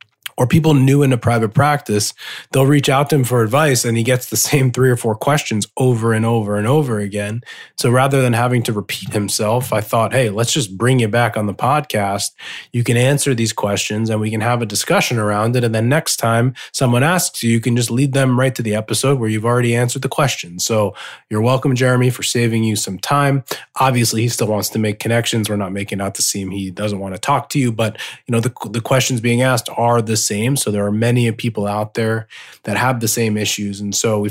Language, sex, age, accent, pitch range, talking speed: English, male, 20-39, American, 110-130 Hz, 240 wpm